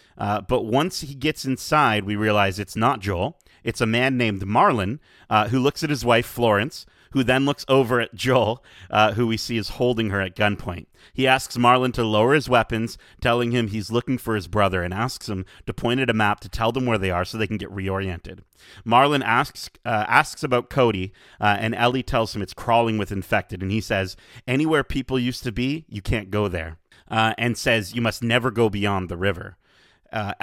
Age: 30-49